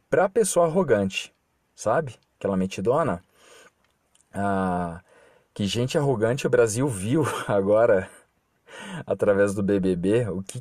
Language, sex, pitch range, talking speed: Portuguese, male, 95-140 Hz, 105 wpm